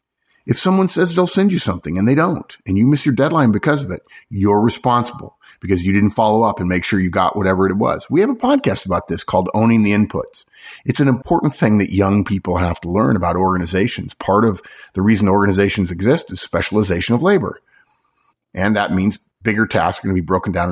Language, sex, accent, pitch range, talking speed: English, male, American, 95-125 Hz, 220 wpm